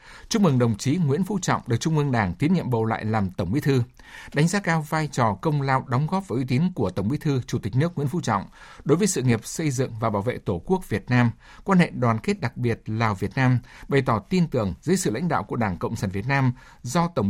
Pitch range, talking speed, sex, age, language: 110-160 Hz, 275 wpm, male, 60-79, Vietnamese